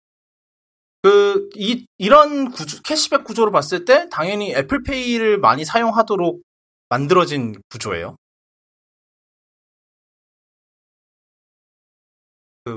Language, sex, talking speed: English, male, 65 wpm